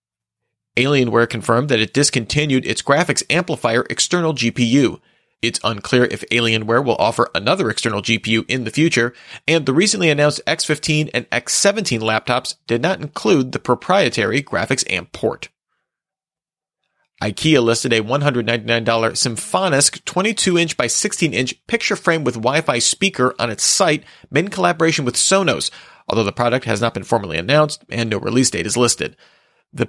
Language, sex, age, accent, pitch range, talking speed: English, male, 30-49, American, 115-155 Hz, 145 wpm